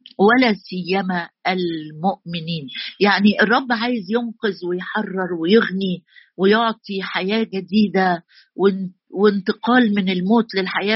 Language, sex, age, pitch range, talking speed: Arabic, female, 50-69, 185-235 Hz, 90 wpm